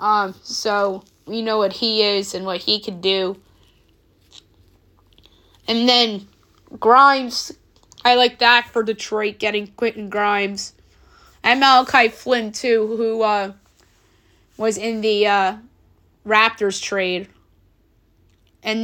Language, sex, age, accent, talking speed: English, female, 20-39, American, 115 wpm